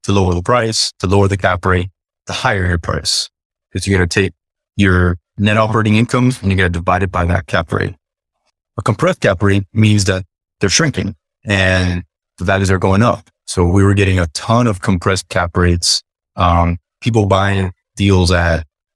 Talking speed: 195 wpm